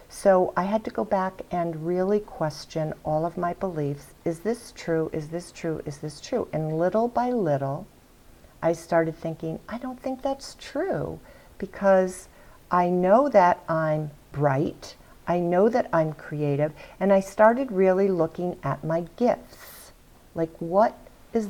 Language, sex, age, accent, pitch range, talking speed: English, female, 50-69, American, 155-195 Hz, 155 wpm